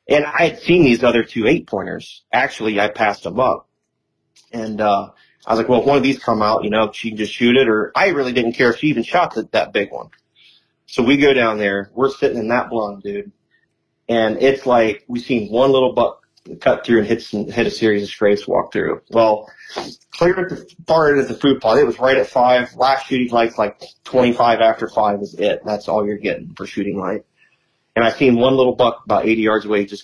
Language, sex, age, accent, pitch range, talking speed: English, male, 30-49, American, 105-130 Hz, 235 wpm